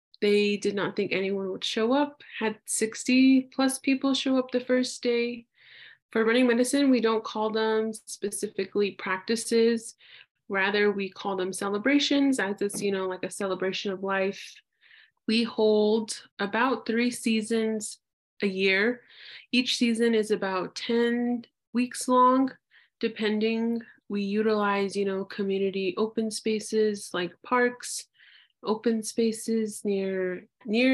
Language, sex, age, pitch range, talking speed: English, female, 20-39, 200-240 Hz, 130 wpm